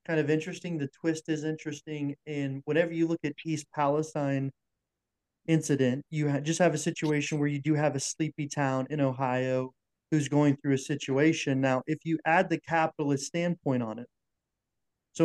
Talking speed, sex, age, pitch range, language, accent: 175 wpm, male, 30-49, 135-155 Hz, English, American